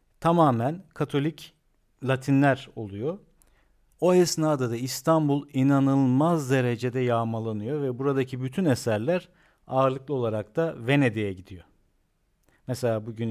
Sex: male